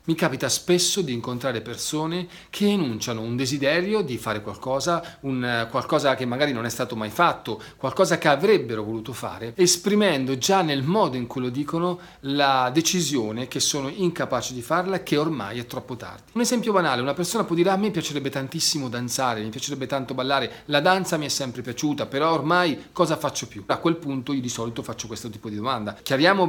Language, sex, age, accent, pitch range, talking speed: Italian, male, 40-59, native, 120-165 Hz, 195 wpm